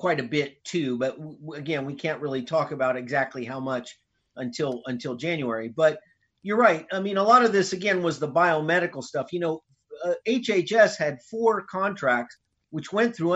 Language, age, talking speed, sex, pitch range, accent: English, 50-69, 185 wpm, male, 145-190 Hz, American